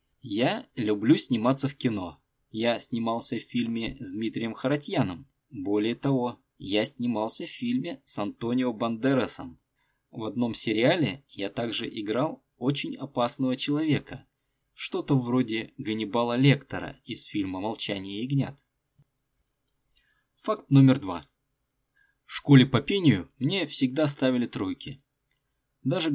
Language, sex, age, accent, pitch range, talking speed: Russian, male, 20-39, native, 115-140 Hz, 115 wpm